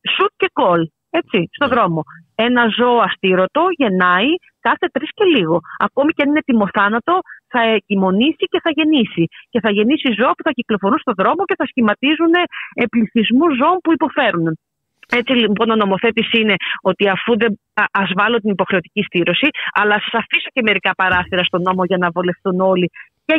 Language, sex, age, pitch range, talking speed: Greek, female, 30-49, 185-250 Hz, 165 wpm